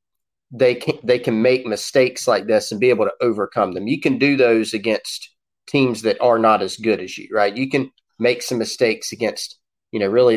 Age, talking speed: 30-49, 210 wpm